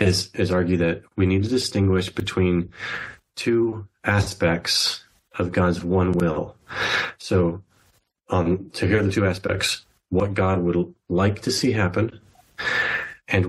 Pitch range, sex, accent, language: 90-100 Hz, male, American, English